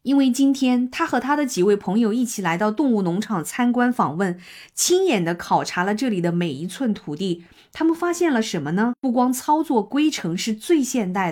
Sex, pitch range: female, 220-310 Hz